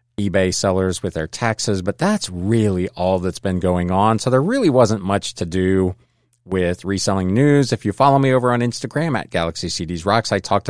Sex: male